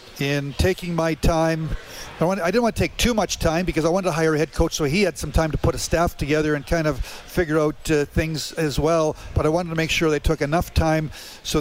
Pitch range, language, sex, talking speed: 145-165 Hz, English, male, 265 wpm